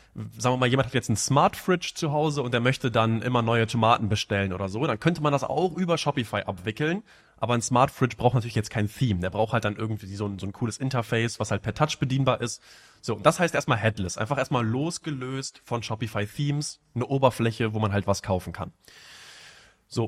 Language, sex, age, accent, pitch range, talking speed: German, male, 20-39, German, 115-150 Hz, 225 wpm